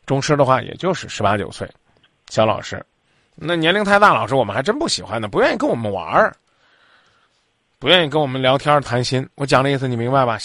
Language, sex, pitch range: Chinese, male, 135-200 Hz